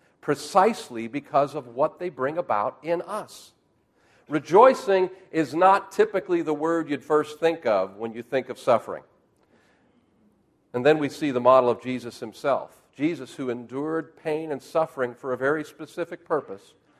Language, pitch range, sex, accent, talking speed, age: English, 125-160 Hz, male, American, 155 wpm, 50-69